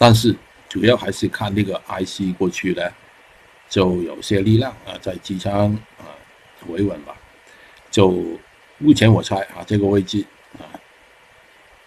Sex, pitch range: male, 95-110 Hz